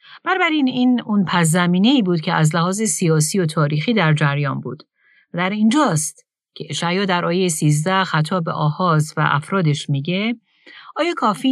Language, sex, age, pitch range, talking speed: Persian, female, 40-59, 155-205 Hz, 150 wpm